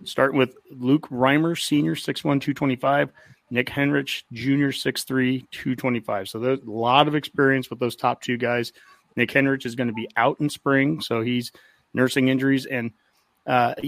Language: English